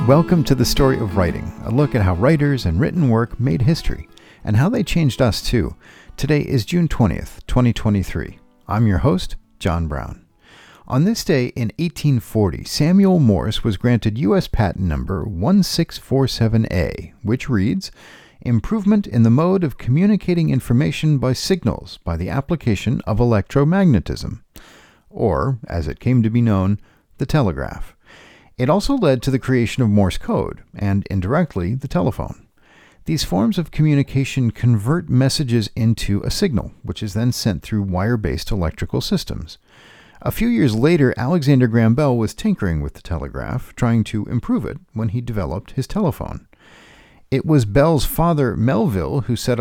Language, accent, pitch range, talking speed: English, American, 100-145 Hz, 155 wpm